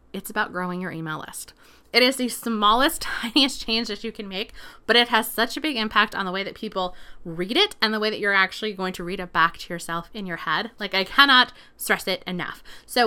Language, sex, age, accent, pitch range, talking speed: English, female, 20-39, American, 190-245 Hz, 245 wpm